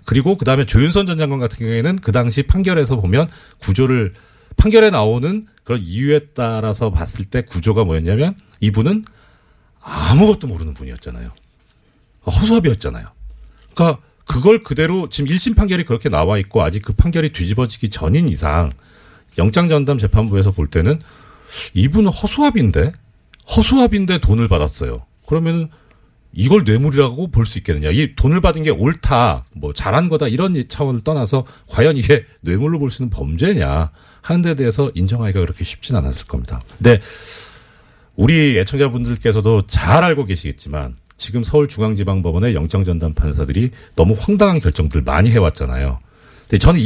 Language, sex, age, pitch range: Korean, male, 40-59, 90-150 Hz